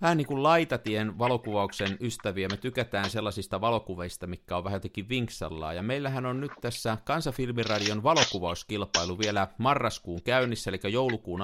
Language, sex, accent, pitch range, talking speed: Finnish, male, native, 95-125 Hz, 135 wpm